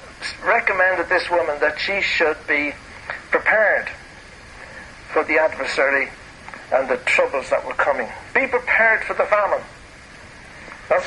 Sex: male